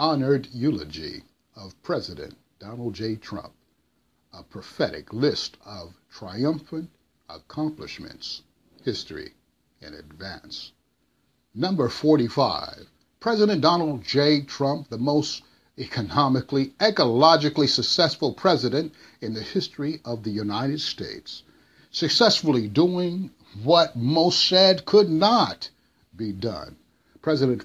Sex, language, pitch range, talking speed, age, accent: male, English, 130-165 Hz, 100 wpm, 60-79, American